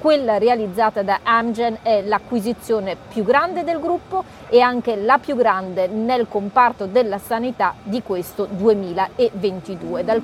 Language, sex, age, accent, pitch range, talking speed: Italian, female, 40-59, native, 205-250 Hz, 135 wpm